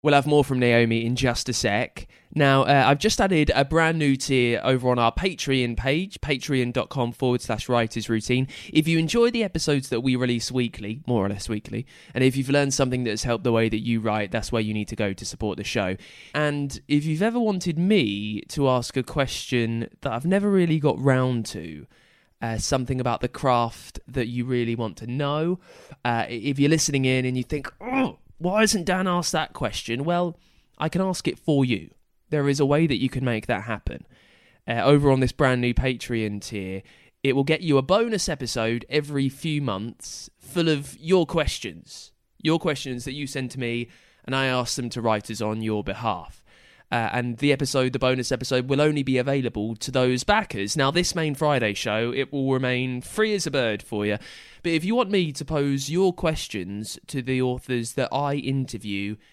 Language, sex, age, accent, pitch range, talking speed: English, male, 20-39, British, 115-150 Hz, 205 wpm